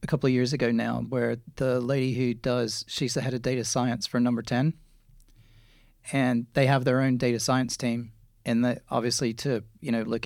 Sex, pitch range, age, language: male, 115-135 Hz, 40-59, English